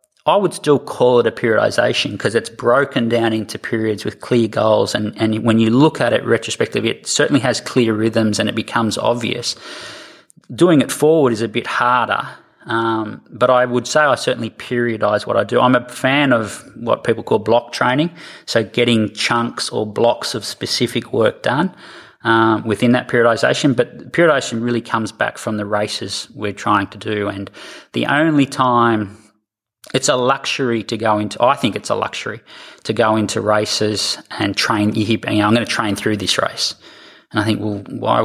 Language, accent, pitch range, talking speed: English, Australian, 105-120 Hz, 190 wpm